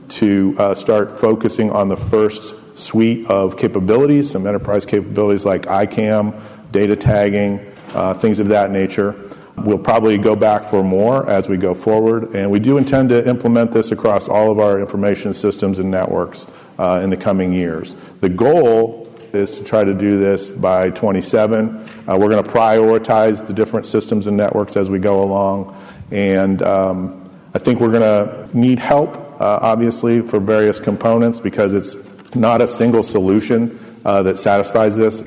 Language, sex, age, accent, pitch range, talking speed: English, male, 50-69, American, 95-110 Hz, 170 wpm